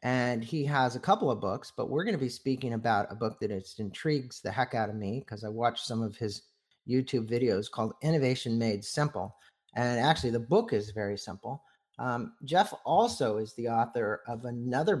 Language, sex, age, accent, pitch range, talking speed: English, male, 40-59, American, 110-140 Hz, 200 wpm